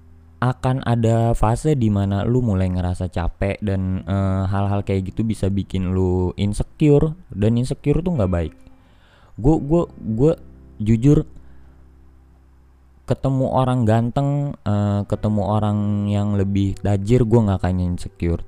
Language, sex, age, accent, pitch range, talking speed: Indonesian, male, 20-39, native, 90-110 Hz, 120 wpm